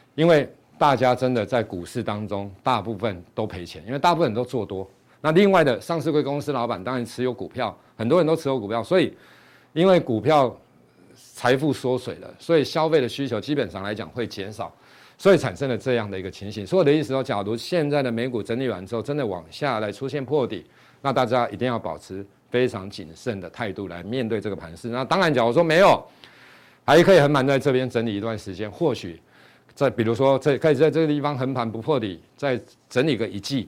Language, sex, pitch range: Chinese, male, 115-145 Hz